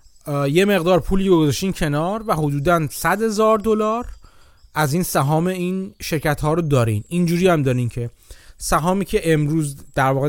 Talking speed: 155 wpm